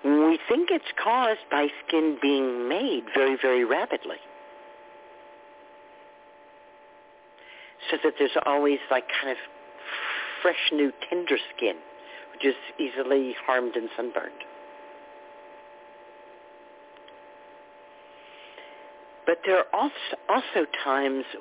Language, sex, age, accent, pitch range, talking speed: English, male, 50-69, American, 95-145 Hz, 95 wpm